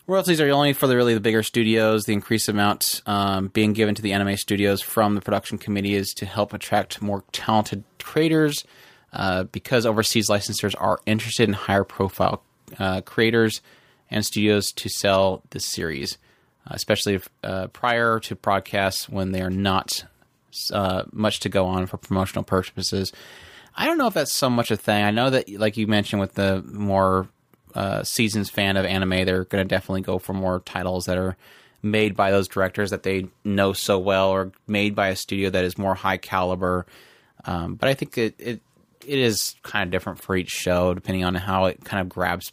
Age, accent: 30-49, American